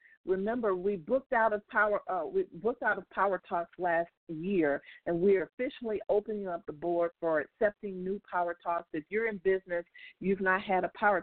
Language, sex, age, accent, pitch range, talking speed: English, female, 50-69, American, 175-215 Hz, 200 wpm